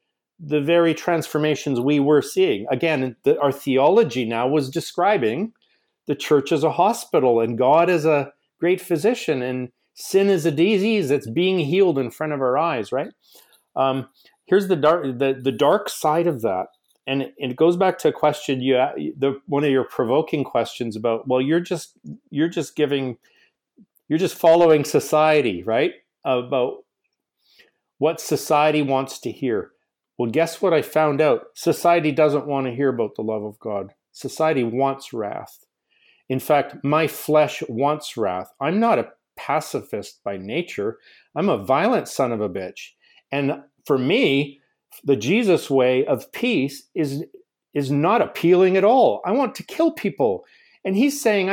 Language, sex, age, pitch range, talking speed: English, male, 40-59, 135-175 Hz, 165 wpm